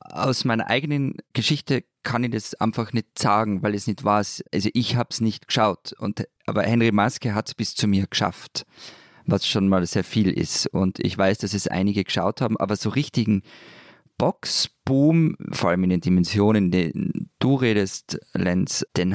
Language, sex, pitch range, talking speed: German, male, 95-125 Hz, 180 wpm